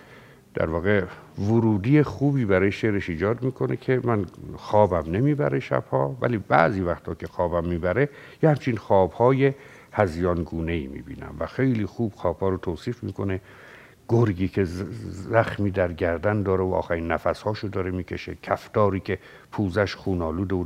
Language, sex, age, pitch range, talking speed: Persian, male, 60-79, 90-115 Hz, 155 wpm